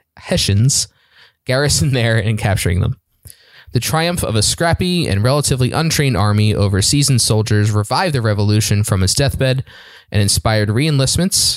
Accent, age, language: American, 20-39, English